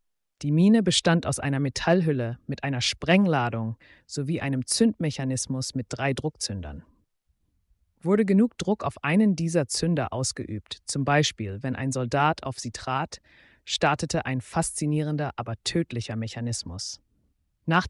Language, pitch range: German, 115-165 Hz